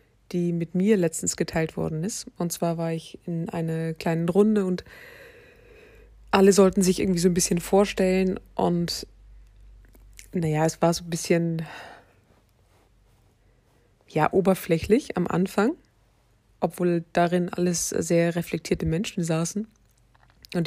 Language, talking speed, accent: German, 125 wpm, German